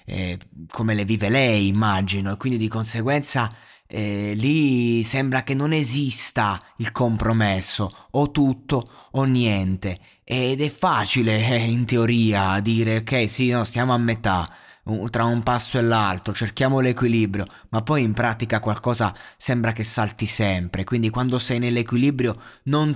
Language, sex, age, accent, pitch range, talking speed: Italian, male, 20-39, native, 105-125 Hz, 145 wpm